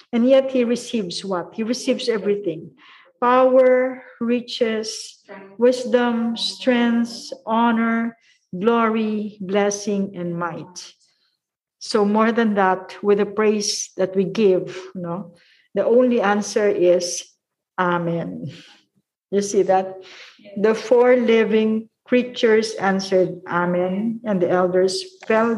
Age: 50-69